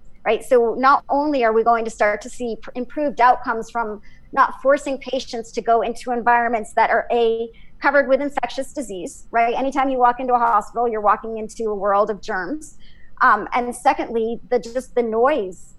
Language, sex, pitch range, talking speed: English, male, 220-265 Hz, 185 wpm